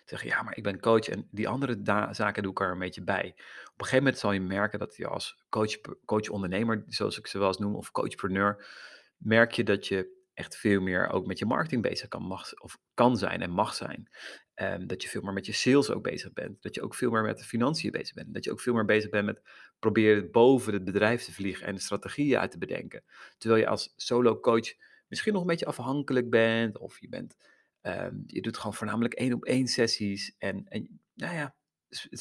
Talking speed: 215 wpm